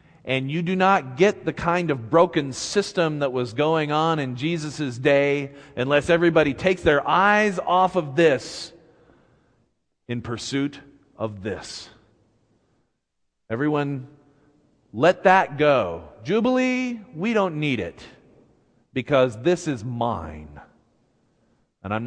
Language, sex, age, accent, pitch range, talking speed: English, male, 40-59, American, 105-155 Hz, 120 wpm